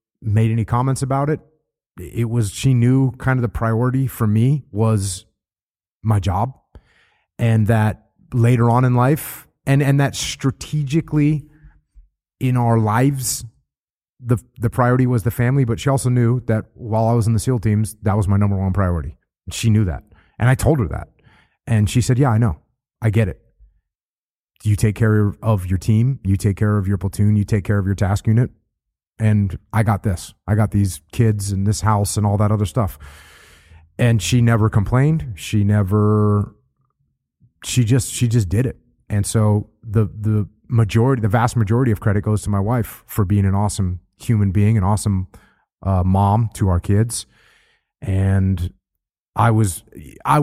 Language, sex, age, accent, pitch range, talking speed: English, male, 30-49, American, 100-125 Hz, 180 wpm